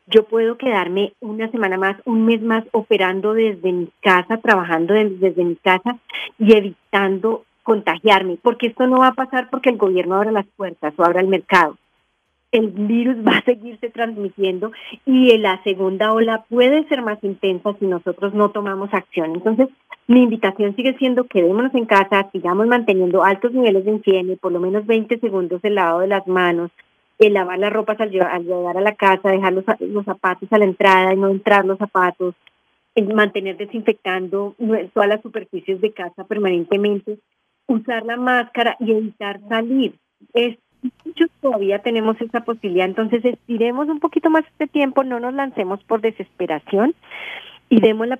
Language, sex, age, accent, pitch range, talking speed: English, female, 30-49, Colombian, 195-235 Hz, 170 wpm